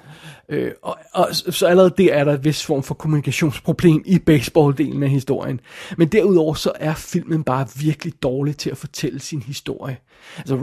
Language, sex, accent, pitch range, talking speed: Danish, male, native, 145-180 Hz, 180 wpm